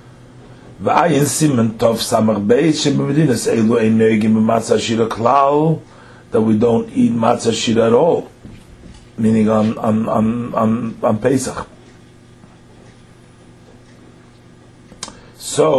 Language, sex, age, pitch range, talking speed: English, male, 50-69, 110-140 Hz, 65 wpm